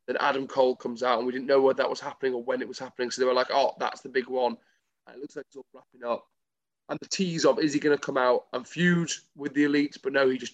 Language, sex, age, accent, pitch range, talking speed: English, male, 20-39, British, 125-145 Hz, 305 wpm